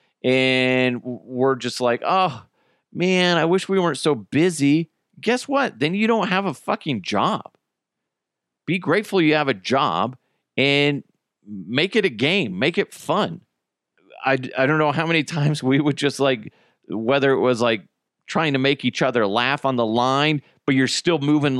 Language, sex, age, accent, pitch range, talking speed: English, male, 40-59, American, 125-150 Hz, 175 wpm